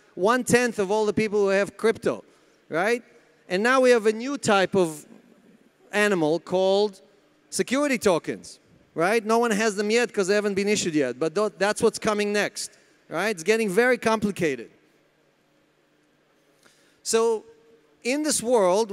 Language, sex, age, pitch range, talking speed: English, male, 30-49, 190-235 Hz, 150 wpm